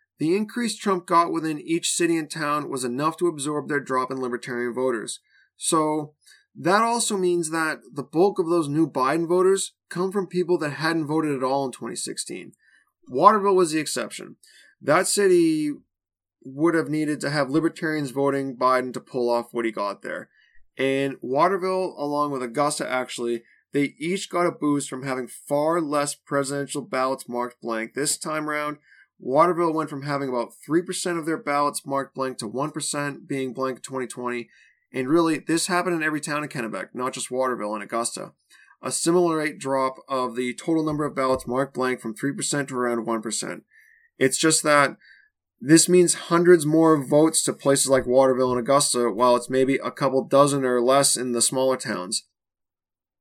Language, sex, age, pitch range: English, male, 20-39, 125-160 Hz